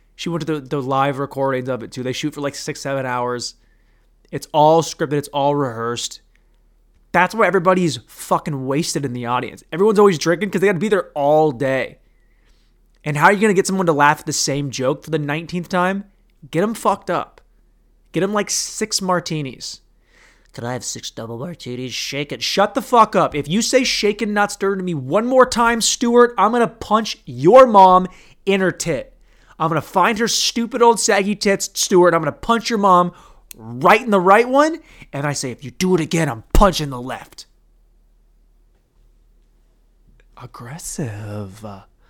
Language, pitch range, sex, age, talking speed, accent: English, 130-195 Hz, male, 20-39, 195 wpm, American